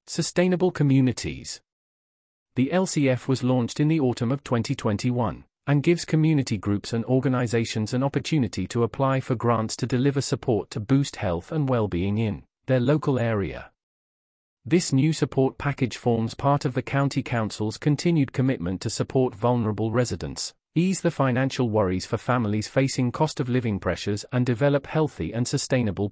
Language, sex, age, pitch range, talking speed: English, male, 40-59, 110-140 Hz, 155 wpm